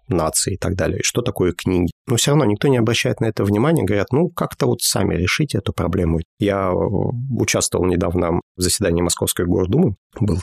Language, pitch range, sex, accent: Russian, 90-110 Hz, male, native